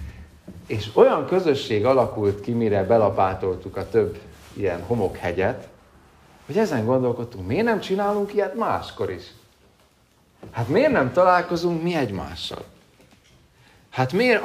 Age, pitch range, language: 40-59, 105-155 Hz, Hungarian